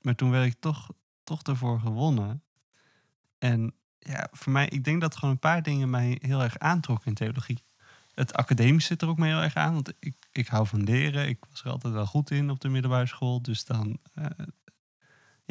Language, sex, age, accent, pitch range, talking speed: Dutch, male, 20-39, Dutch, 110-140 Hz, 210 wpm